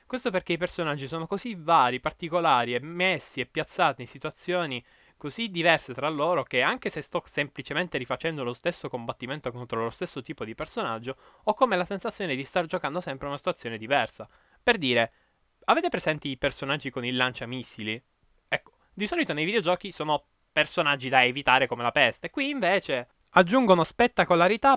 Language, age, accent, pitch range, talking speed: Italian, 10-29, native, 140-190 Hz, 170 wpm